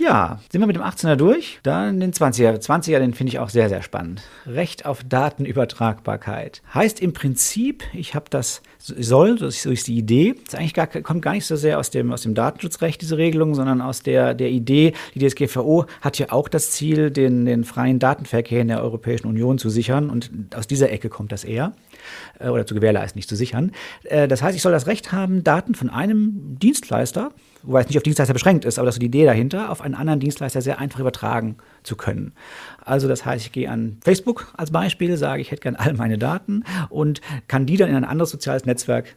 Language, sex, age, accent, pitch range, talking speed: German, male, 50-69, German, 120-165 Hz, 215 wpm